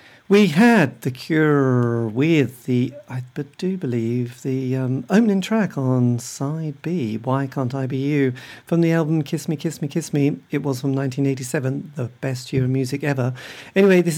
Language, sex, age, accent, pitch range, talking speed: English, male, 50-69, British, 130-165 Hz, 180 wpm